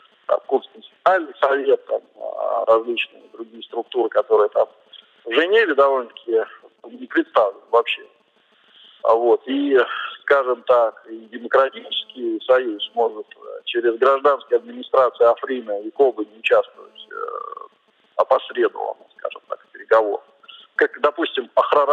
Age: 40-59